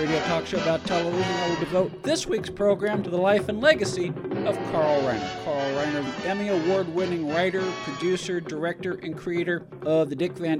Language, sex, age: English, male, 50-69